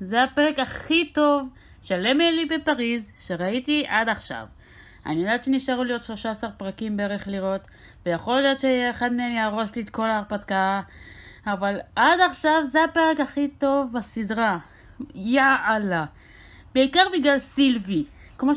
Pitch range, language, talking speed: 220-285 Hz, Hebrew, 135 wpm